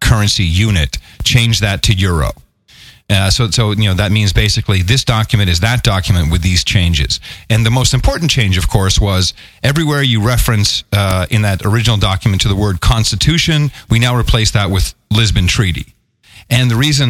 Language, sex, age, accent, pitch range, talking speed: English, male, 40-59, American, 95-135 Hz, 185 wpm